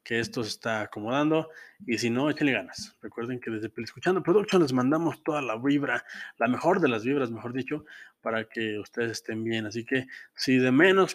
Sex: male